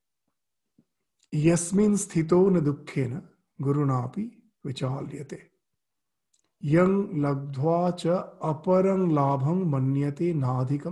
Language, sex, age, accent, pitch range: English, male, 50-69, Indian, 150-185 Hz